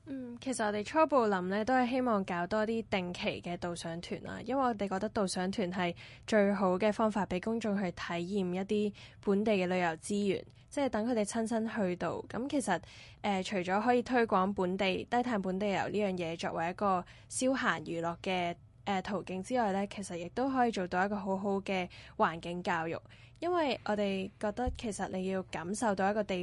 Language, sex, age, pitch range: Chinese, female, 10-29, 185-220 Hz